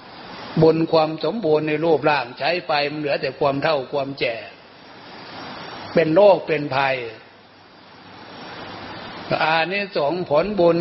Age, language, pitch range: 60-79, Thai, 140-165 Hz